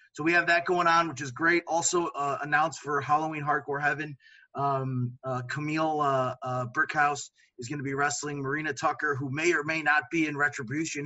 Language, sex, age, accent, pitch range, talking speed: English, male, 30-49, American, 140-165 Hz, 200 wpm